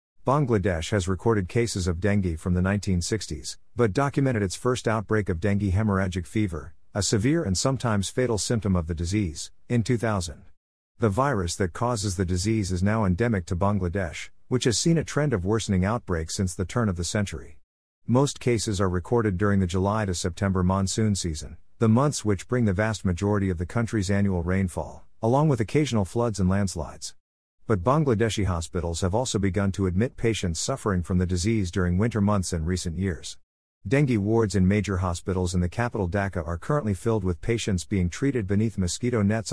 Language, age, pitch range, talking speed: English, 50-69, 90-115 Hz, 185 wpm